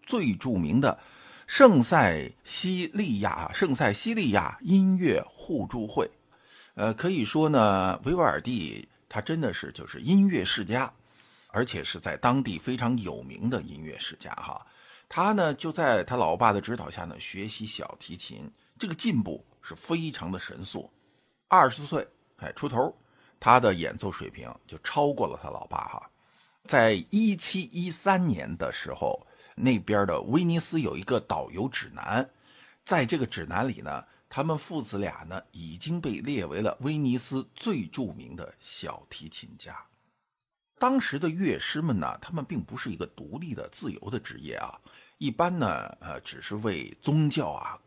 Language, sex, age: Chinese, male, 50-69